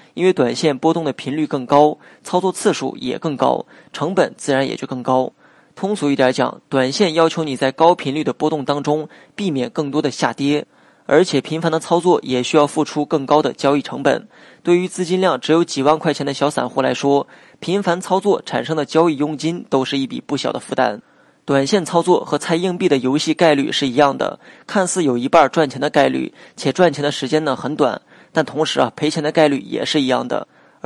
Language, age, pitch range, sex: Chinese, 20-39, 140-165 Hz, male